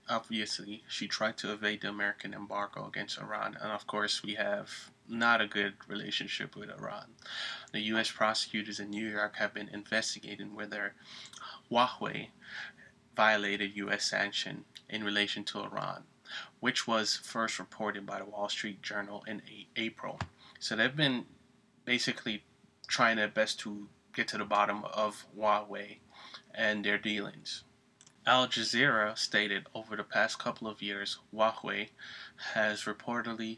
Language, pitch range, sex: English, 105-110 Hz, male